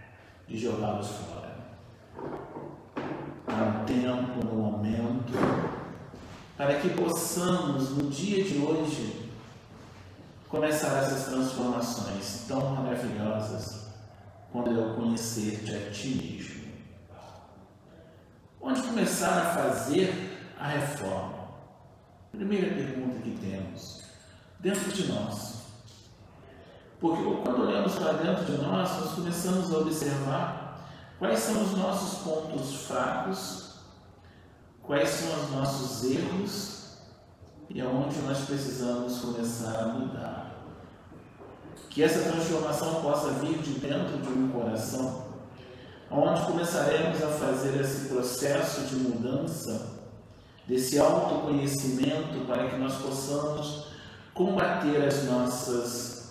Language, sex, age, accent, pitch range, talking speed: Portuguese, male, 40-59, Brazilian, 110-150 Hz, 100 wpm